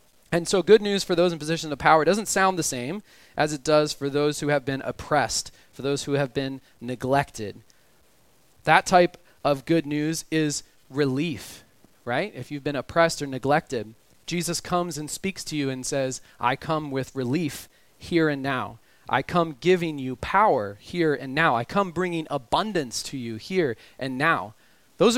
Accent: American